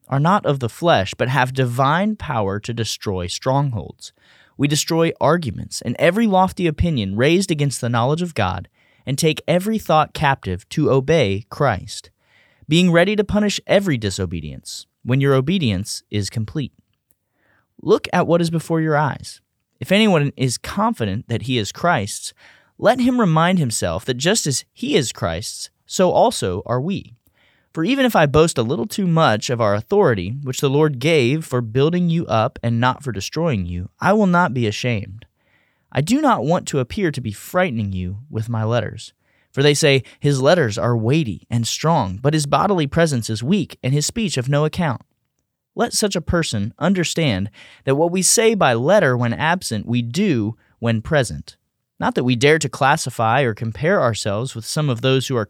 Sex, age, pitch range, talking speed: male, 30-49, 115-165 Hz, 185 wpm